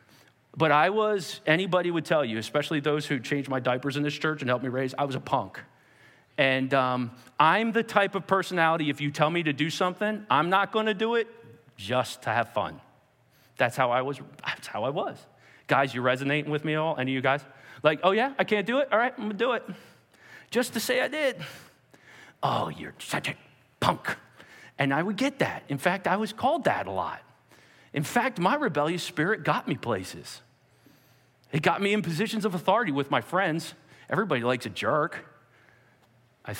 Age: 40-59